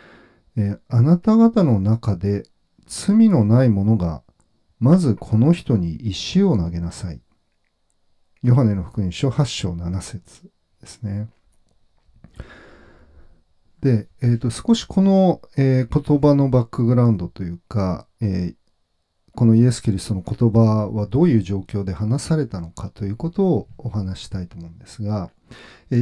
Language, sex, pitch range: Japanese, male, 90-140 Hz